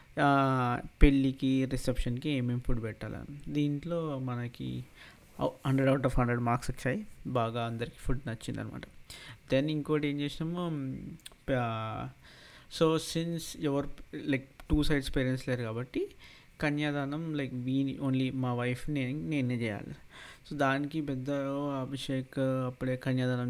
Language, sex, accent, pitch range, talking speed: Telugu, male, native, 120-140 Hz, 115 wpm